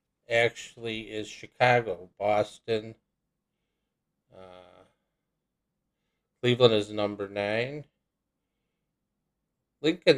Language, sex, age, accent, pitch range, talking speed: English, male, 50-69, American, 95-115 Hz, 60 wpm